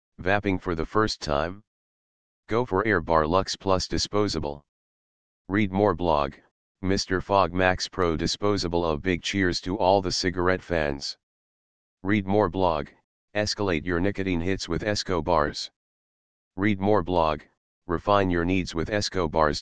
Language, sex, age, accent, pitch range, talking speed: English, male, 40-59, American, 85-100 Hz, 145 wpm